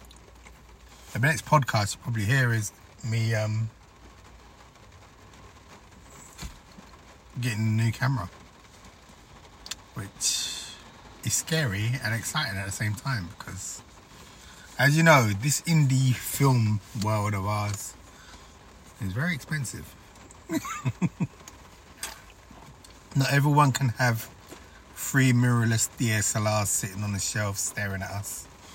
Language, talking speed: English, 100 wpm